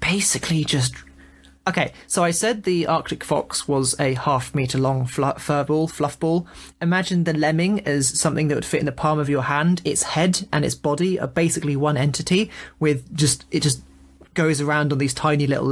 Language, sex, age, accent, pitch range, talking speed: English, male, 20-39, British, 140-170 Hz, 190 wpm